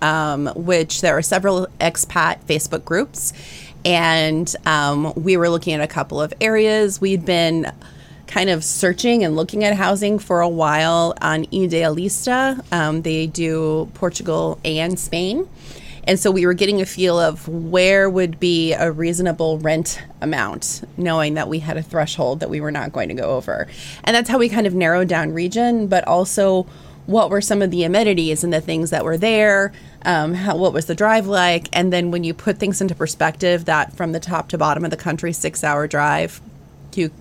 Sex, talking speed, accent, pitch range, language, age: female, 185 wpm, American, 160-195 Hz, English, 20-39